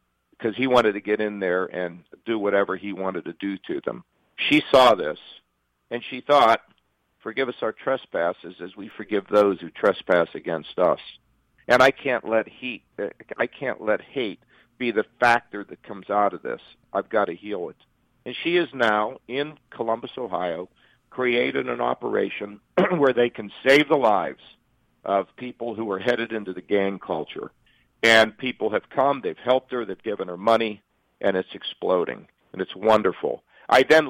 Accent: American